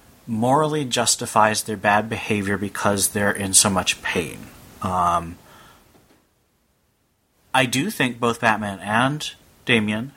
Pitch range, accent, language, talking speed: 100-115 Hz, American, English, 110 wpm